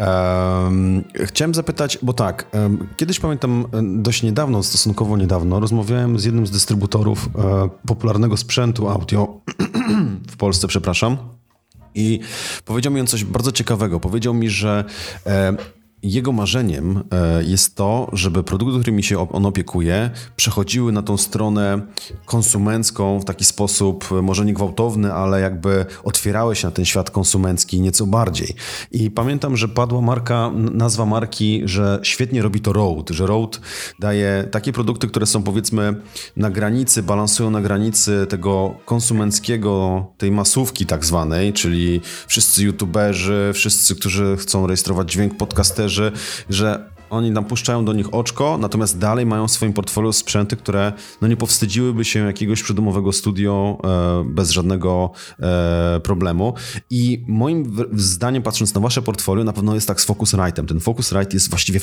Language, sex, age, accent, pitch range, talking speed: Polish, male, 30-49, native, 95-115 Hz, 140 wpm